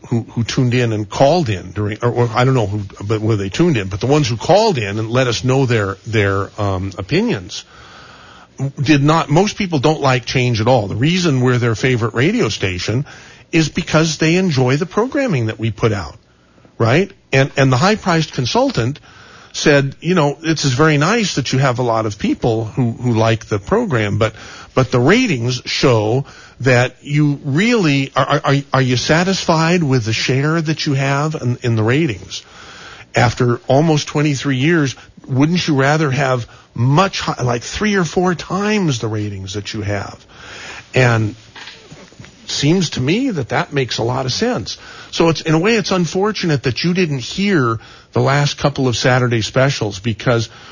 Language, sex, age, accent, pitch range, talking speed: English, male, 50-69, American, 115-160 Hz, 190 wpm